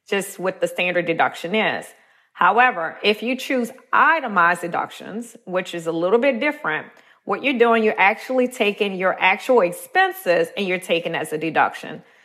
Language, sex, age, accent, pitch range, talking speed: English, female, 30-49, American, 180-230 Hz, 160 wpm